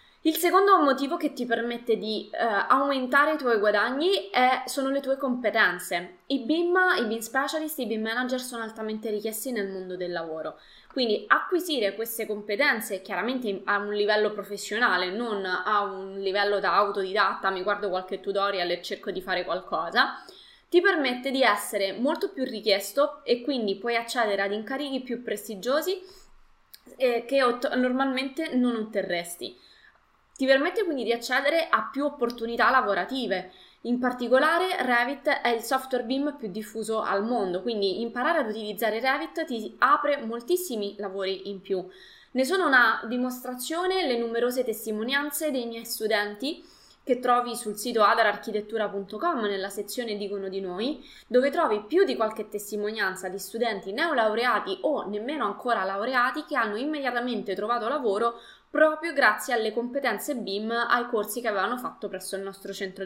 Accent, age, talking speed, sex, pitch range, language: native, 20-39, 150 wpm, female, 205-270 Hz, Italian